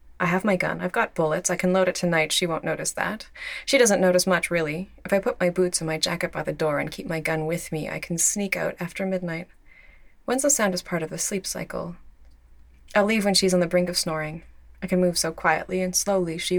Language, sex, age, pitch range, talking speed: English, female, 20-39, 160-185 Hz, 255 wpm